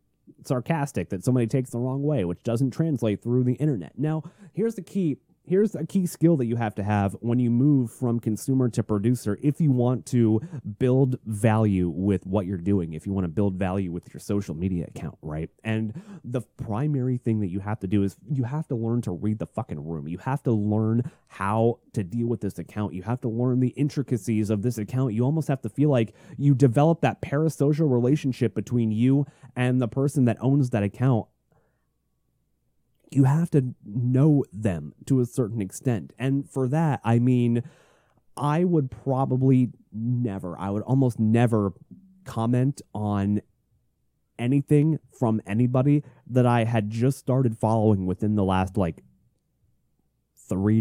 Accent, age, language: American, 30-49, English